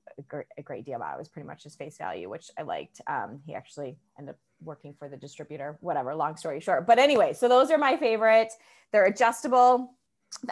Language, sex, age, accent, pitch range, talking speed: English, female, 20-39, American, 165-235 Hz, 210 wpm